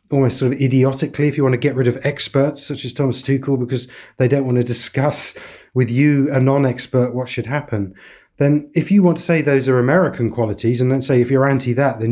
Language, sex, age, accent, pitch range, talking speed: English, male, 30-49, British, 110-135 Hz, 230 wpm